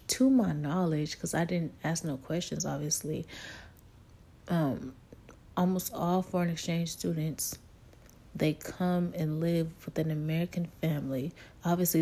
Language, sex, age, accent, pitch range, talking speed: English, female, 30-49, American, 150-185 Hz, 125 wpm